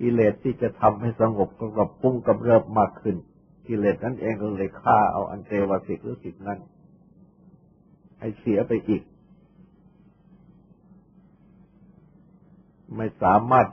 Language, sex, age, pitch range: Thai, male, 60-79, 115-185 Hz